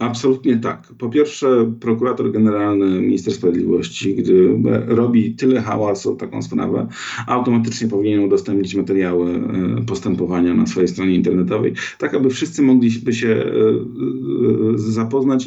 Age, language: 40-59, Polish